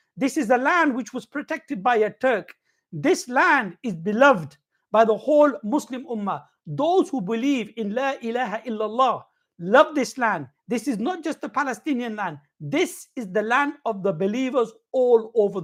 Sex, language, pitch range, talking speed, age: male, English, 195-260 Hz, 175 wpm, 60-79